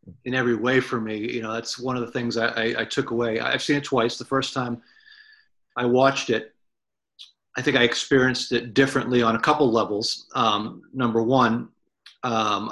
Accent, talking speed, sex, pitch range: American, 195 wpm, male, 115-135 Hz